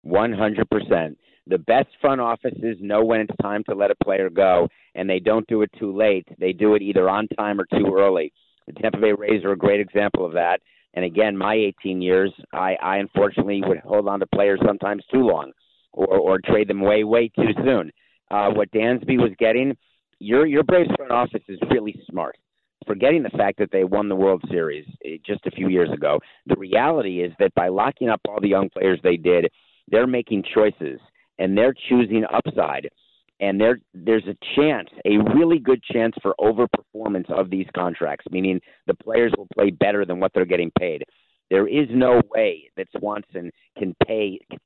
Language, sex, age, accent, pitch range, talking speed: English, male, 50-69, American, 95-115 Hz, 190 wpm